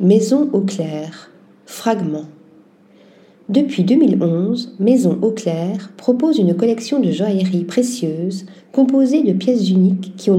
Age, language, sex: 40-59, French, female